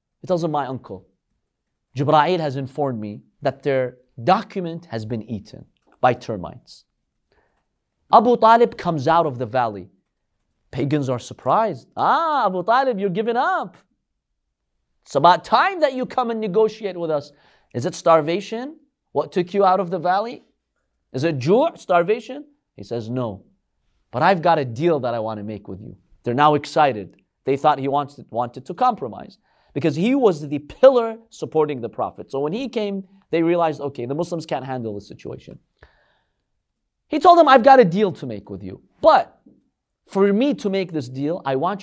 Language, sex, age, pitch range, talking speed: English, male, 30-49, 125-210 Hz, 175 wpm